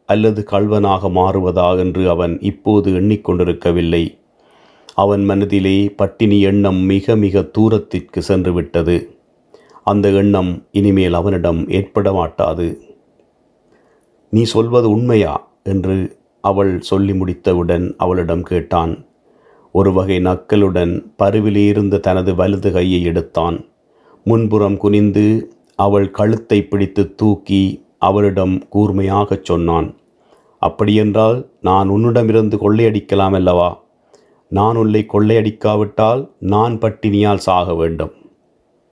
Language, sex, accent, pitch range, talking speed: Tamil, male, native, 90-105 Hz, 95 wpm